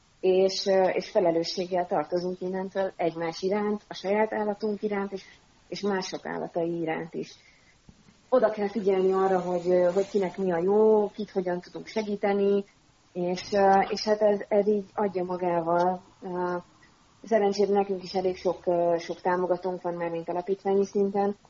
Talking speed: 140 wpm